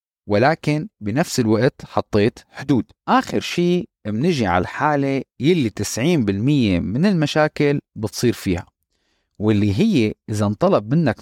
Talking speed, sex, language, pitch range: 110 wpm, male, Arabic, 115-180 Hz